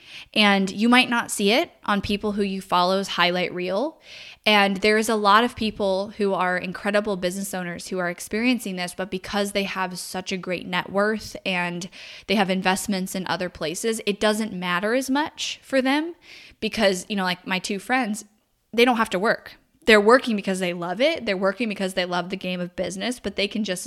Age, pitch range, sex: 10-29, 185-220 Hz, female